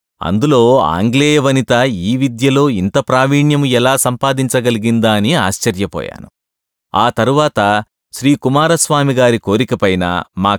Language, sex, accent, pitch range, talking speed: English, male, Indian, 105-145 Hz, 95 wpm